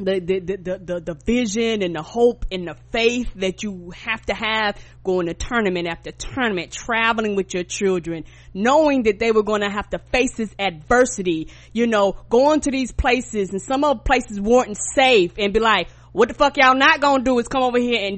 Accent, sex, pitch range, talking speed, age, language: American, female, 195-250 Hz, 215 wpm, 20-39, English